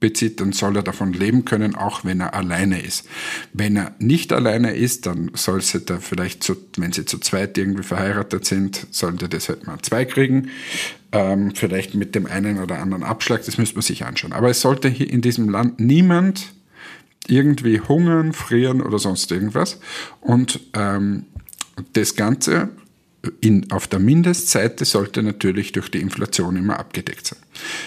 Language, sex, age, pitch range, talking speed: German, male, 50-69, 100-130 Hz, 165 wpm